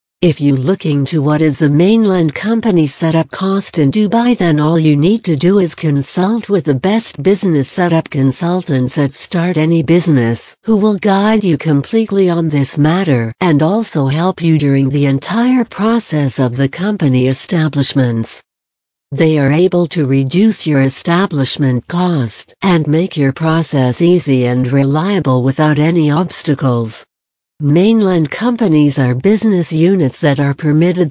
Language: English